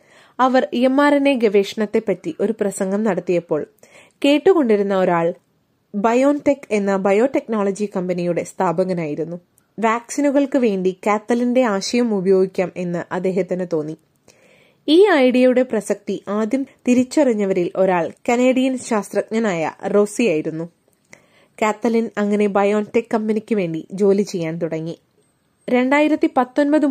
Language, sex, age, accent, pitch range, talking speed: Malayalam, female, 20-39, native, 190-245 Hz, 95 wpm